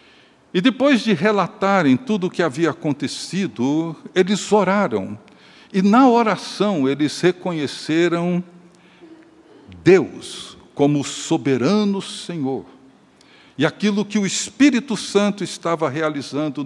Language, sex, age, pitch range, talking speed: Portuguese, male, 60-79, 145-210 Hz, 100 wpm